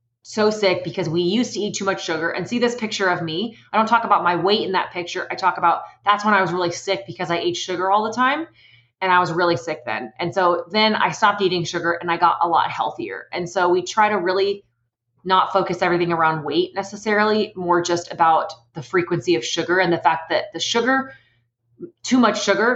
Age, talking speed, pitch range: 20-39, 230 wpm, 170-200 Hz